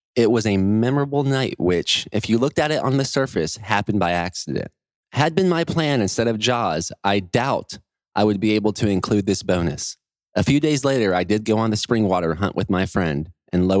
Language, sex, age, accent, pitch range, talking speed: English, male, 20-39, American, 95-135 Hz, 220 wpm